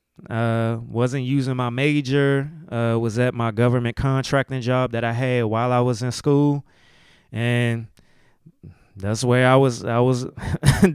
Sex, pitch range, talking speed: male, 110-130 Hz, 150 wpm